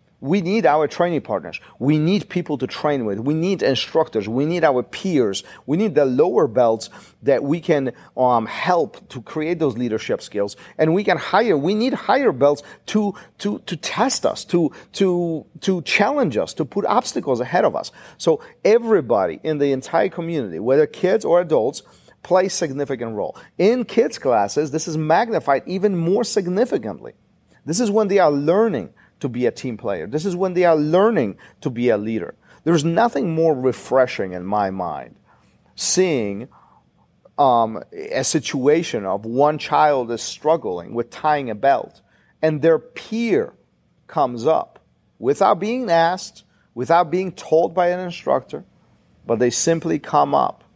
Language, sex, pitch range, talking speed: English, male, 130-185 Hz, 165 wpm